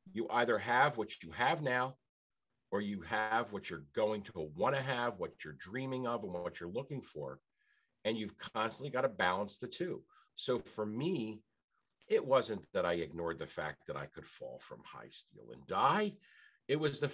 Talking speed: 195 wpm